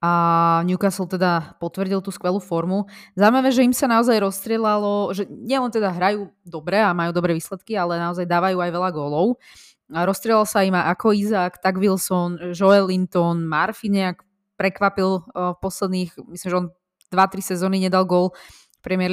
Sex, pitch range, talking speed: female, 175-200 Hz, 160 wpm